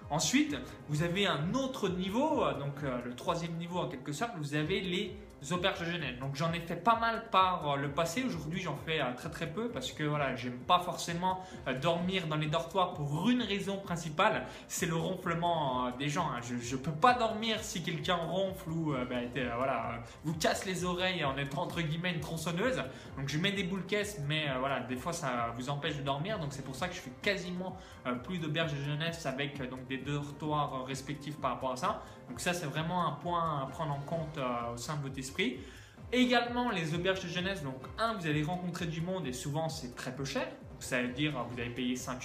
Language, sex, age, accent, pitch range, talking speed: French, male, 20-39, French, 135-185 Hz, 215 wpm